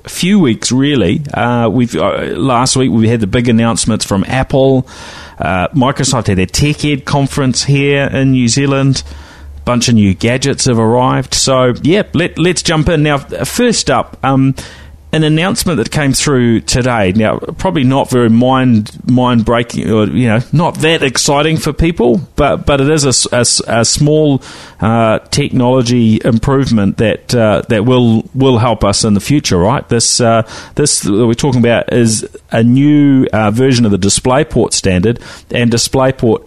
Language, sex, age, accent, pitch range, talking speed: English, male, 30-49, Australian, 105-135 Hz, 170 wpm